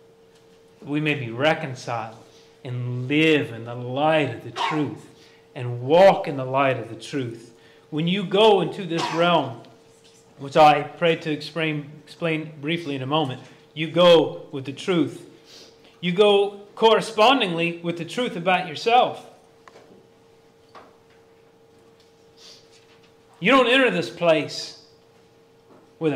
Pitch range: 125-170 Hz